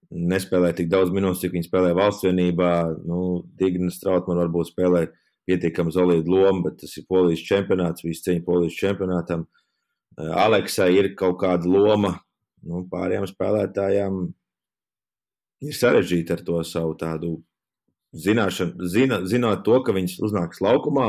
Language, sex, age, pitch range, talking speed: English, male, 30-49, 85-95 Hz, 130 wpm